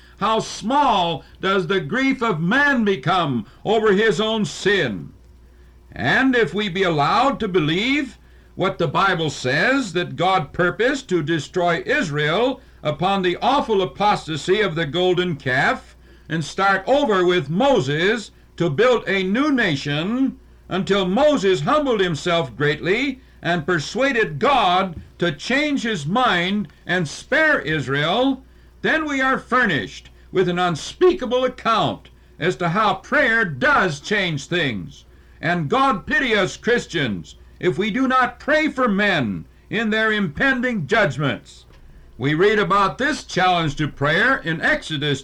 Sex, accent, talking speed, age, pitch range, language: male, American, 135 wpm, 60-79, 160-230 Hz, English